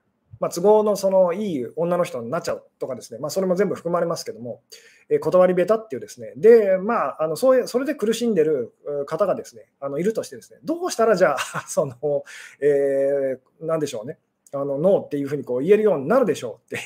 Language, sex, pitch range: Japanese, male, 160-255 Hz